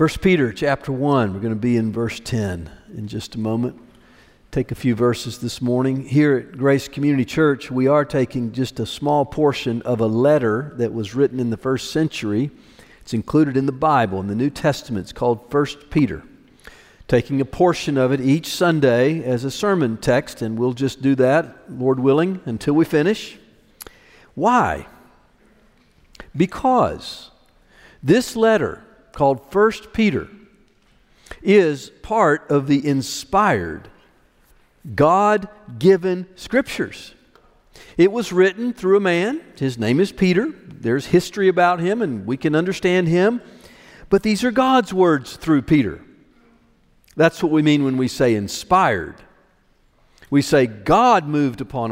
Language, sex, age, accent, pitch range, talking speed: English, male, 50-69, American, 125-180 Hz, 150 wpm